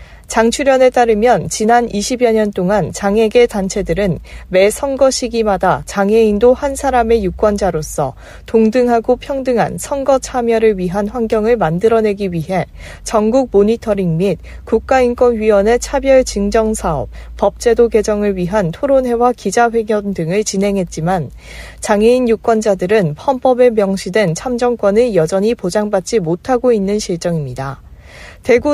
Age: 40-59